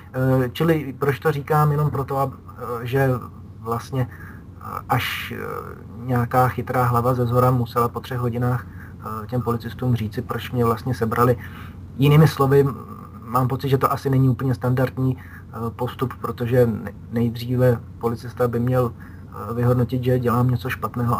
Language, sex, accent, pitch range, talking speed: Czech, male, native, 110-125 Hz, 130 wpm